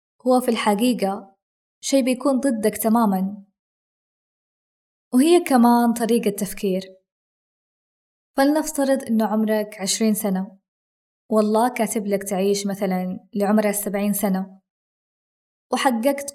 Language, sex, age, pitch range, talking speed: Arabic, female, 20-39, 200-245 Hz, 90 wpm